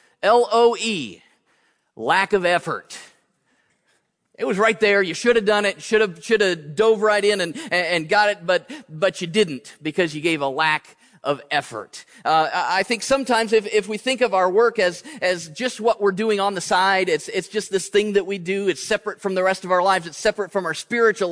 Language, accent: English, American